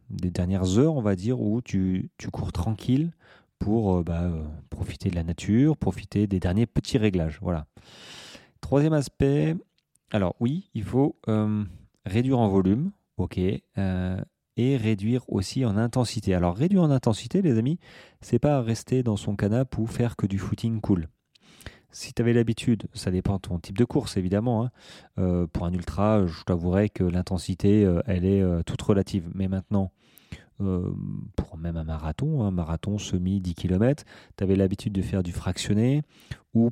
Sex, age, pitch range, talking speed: male, 30-49, 95-120 Hz, 175 wpm